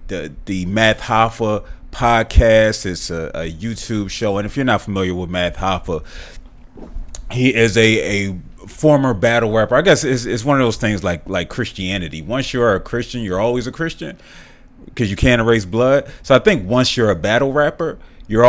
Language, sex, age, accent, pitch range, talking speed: English, male, 30-49, American, 95-120 Hz, 190 wpm